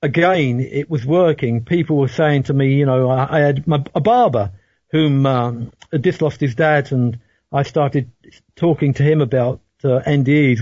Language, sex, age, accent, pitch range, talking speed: English, male, 50-69, British, 130-160 Hz, 180 wpm